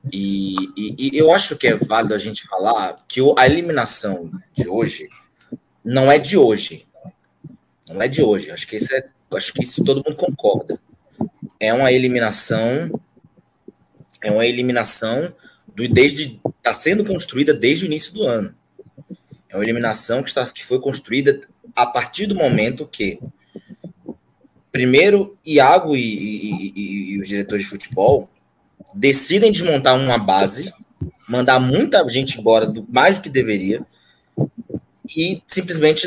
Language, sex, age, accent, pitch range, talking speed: Portuguese, male, 20-39, Brazilian, 115-165 Hz, 145 wpm